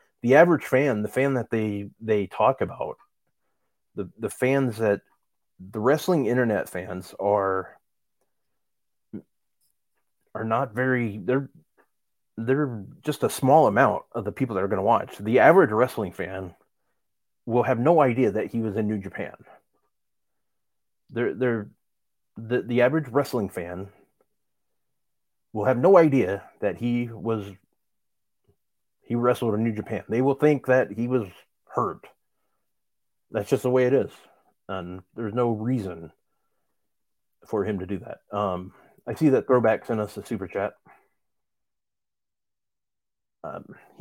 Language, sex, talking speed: English, male, 140 wpm